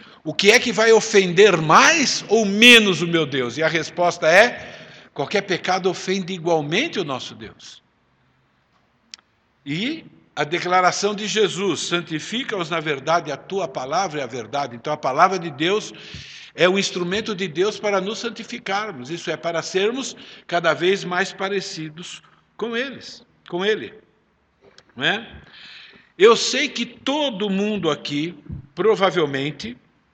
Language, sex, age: Portuguese, male, 60-79